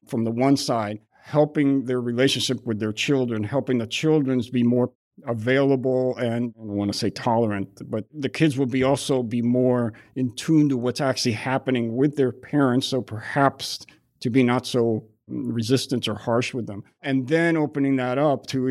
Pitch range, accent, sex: 115-135 Hz, American, male